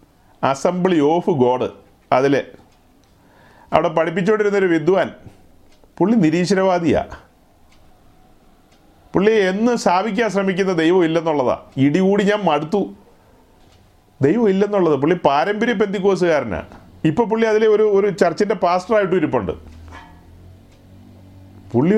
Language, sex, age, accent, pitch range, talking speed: Malayalam, male, 40-59, native, 145-205 Hz, 90 wpm